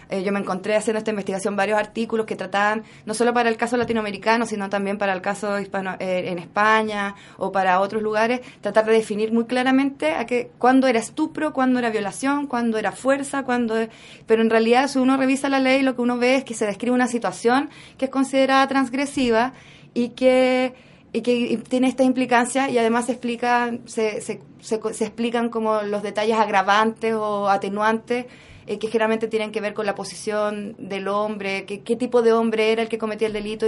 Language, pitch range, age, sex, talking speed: Spanish, 200-235 Hz, 20-39, female, 200 wpm